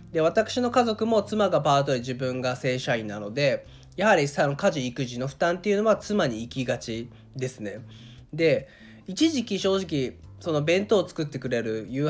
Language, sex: Japanese, male